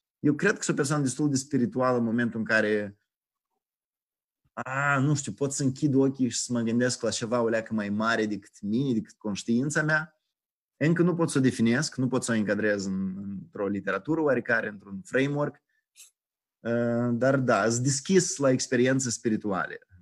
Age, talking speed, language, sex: 20-39, 175 wpm, Romanian, male